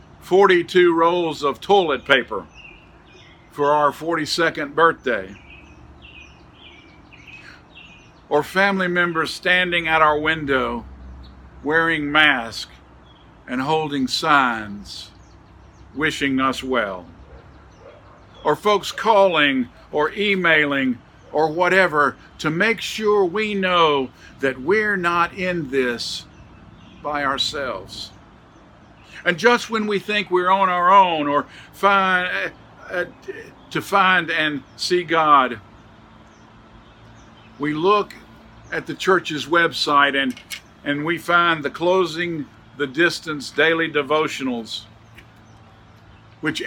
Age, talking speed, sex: 50-69, 100 wpm, male